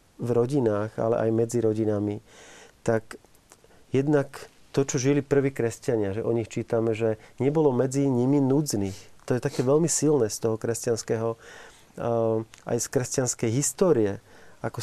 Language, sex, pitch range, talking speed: Slovak, male, 115-135 Hz, 140 wpm